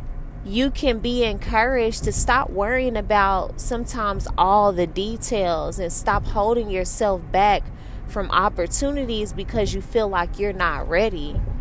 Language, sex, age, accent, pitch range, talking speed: English, female, 20-39, American, 190-235 Hz, 135 wpm